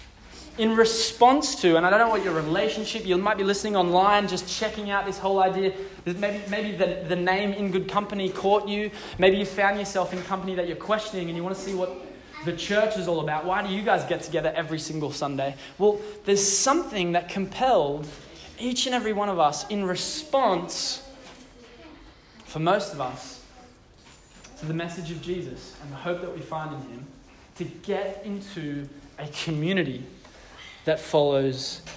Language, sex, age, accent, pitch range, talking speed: English, male, 20-39, Australian, 155-200 Hz, 180 wpm